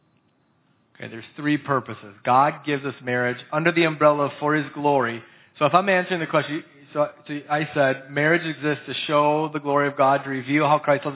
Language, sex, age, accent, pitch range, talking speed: English, male, 40-59, American, 130-150 Hz, 195 wpm